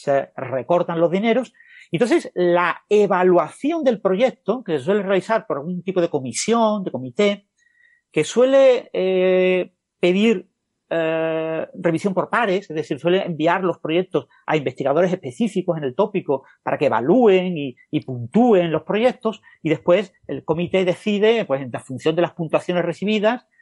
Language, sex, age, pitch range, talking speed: Spanish, male, 40-59, 155-220 Hz, 150 wpm